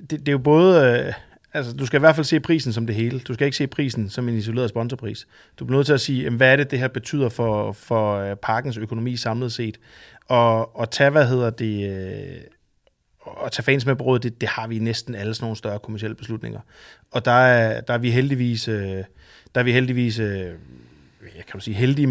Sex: male